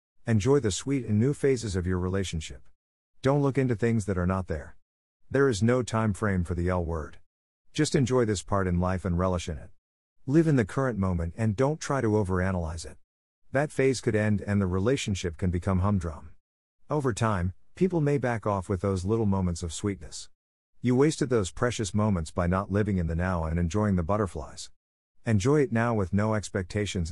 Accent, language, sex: American, English, male